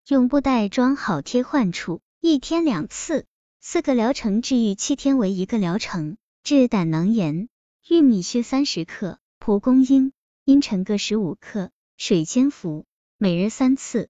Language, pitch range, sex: Chinese, 195-270 Hz, male